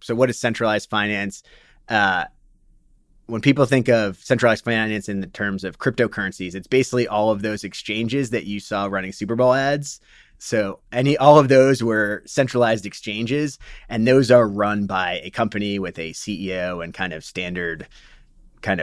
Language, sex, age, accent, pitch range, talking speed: English, male, 30-49, American, 95-120 Hz, 170 wpm